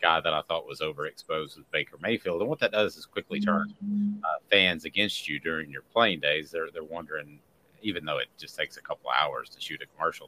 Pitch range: 85-110 Hz